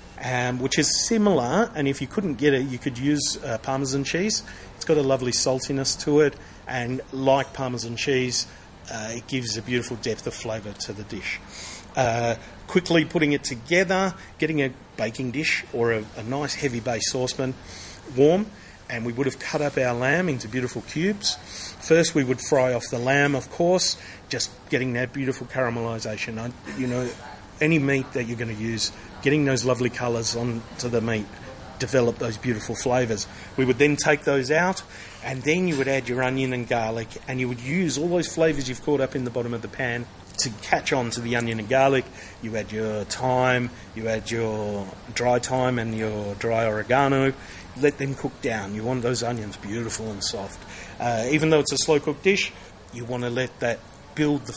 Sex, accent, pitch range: male, Australian, 110-135 Hz